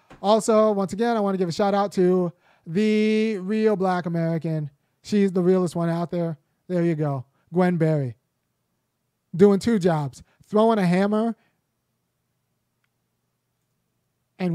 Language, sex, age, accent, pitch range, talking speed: English, male, 20-39, American, 160-200 Hz, 135 wpm